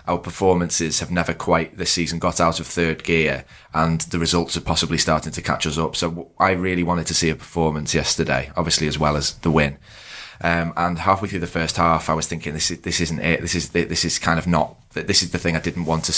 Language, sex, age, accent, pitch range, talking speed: English, male, 20-39, British, 80-90 Hz, 250 wpm